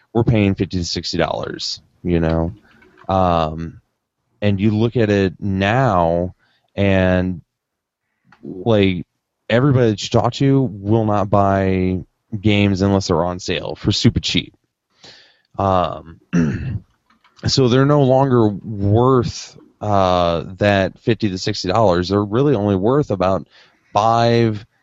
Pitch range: 95-120 Hz